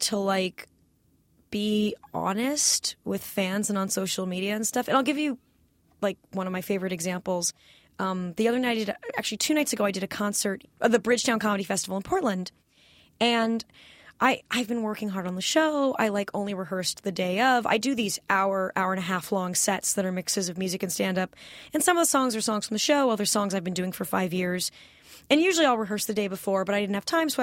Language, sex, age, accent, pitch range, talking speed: English, female, 20-39, American, 190-245 Hz, 230 wpm